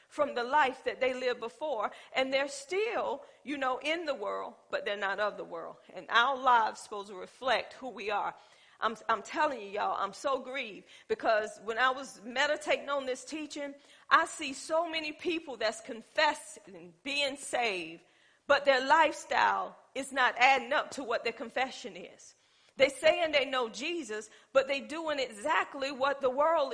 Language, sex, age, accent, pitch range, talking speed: English, female, 40-59, American, 255-320 Hz, 180 wpm